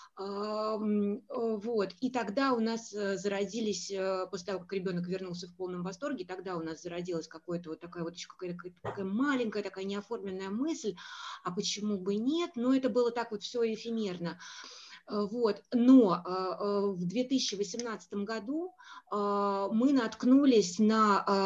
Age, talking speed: 30-49, 130 wpm